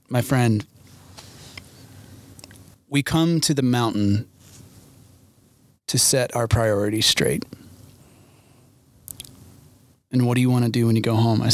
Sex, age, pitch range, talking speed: male, 30-49, 110-130 Hz, 125 wpm